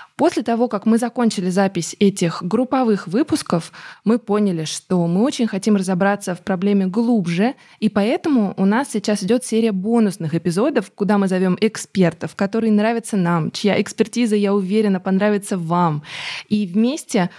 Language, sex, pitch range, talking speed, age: Russian, female, 180-225 Hz, 150 wpm, 20-39